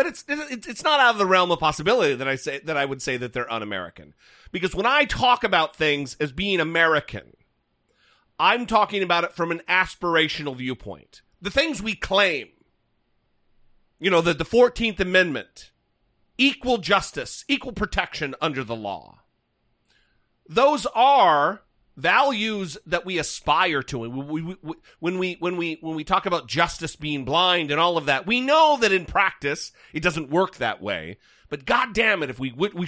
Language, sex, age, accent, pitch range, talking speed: English, male, 40-59, American, 150-230 Hz, 175 wpm